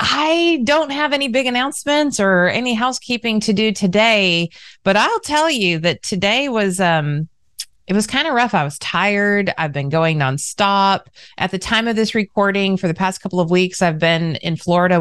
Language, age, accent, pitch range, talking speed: English, 30-49, American, 150-200 Hz, 190 wpm